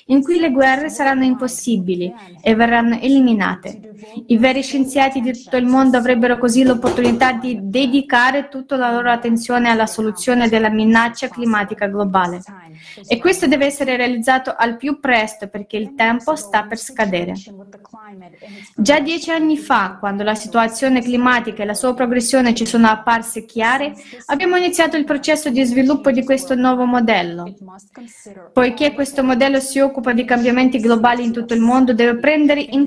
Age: 20-39